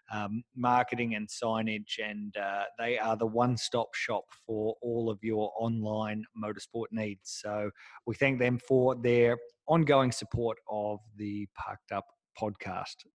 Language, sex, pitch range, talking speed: English, male, 110-135 Hz, 135 wpm